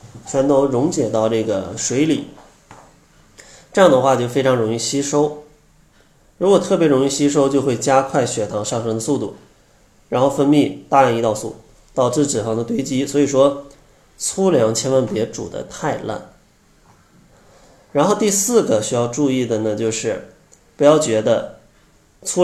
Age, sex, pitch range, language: 20-39, male, 115-145 Hz, Chinese